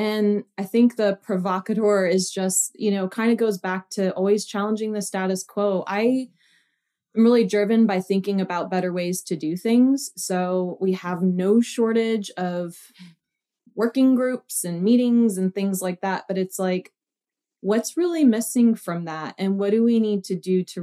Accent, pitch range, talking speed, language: American, 180-220 Hz, 175 wpm, English